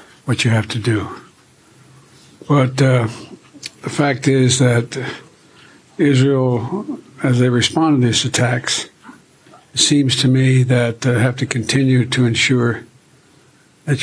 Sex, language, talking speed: male, English, 130 wpm